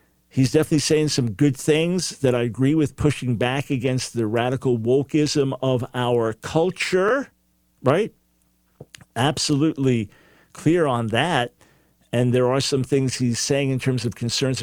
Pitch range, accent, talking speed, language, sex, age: 120-150 Hz, American, 145 wpm, English, male, 50-69